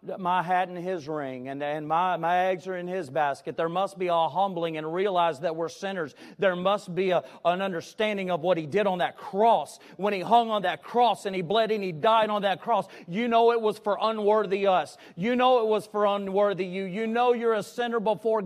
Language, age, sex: English, 40-59, male